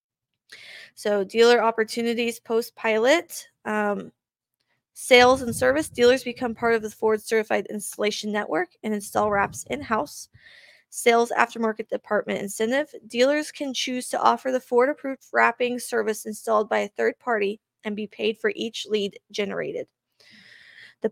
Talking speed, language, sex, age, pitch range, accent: 140 wpm, English, female, 20-39, 210-245 Hz, American